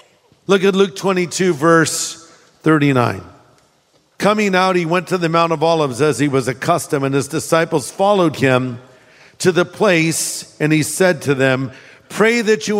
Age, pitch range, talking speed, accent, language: 50-69, 150-190 Hz, 165 wpm, American, English